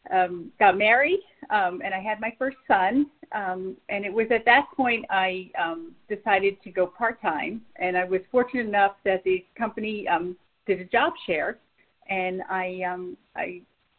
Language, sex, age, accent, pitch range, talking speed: English, female, 40-59, American, 195-250 Hz, 170 wpm